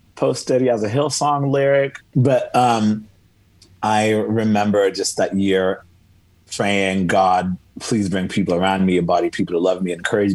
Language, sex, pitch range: English, male, 90-105 Hz